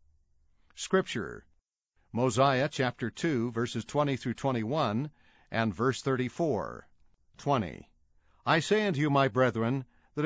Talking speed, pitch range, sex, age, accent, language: 110 wpm, 120-150 Hz, male, 60-79, American, English